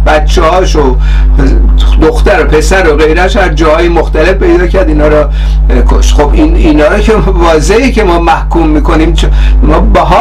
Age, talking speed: 50-69, 155 wpm